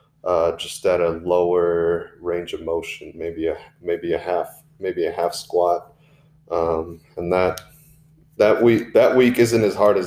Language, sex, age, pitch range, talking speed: English, male, 30-49, 90-155 Hz, 165 wpm